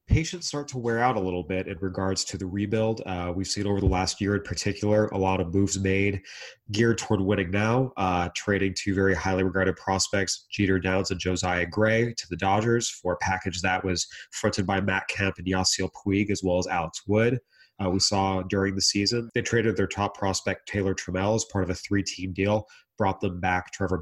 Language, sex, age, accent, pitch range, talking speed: English, male, 30-49, American, 95-110 Hz, 215 wpm